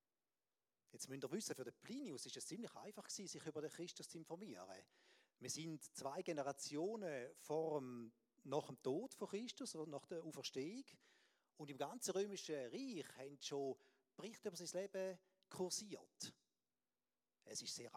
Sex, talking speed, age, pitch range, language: male, 160 wpm, 40-59, 145-205 Hz, German